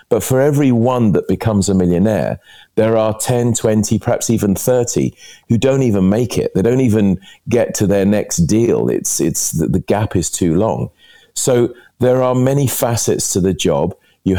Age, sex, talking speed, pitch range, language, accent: 40-59, male, 185 wpm, 90-115 Hz, English, British